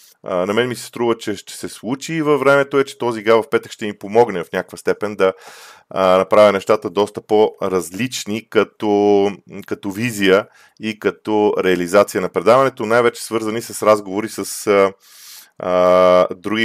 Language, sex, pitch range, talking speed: Bulgarian, male, 105-125 Hz, 160 wpm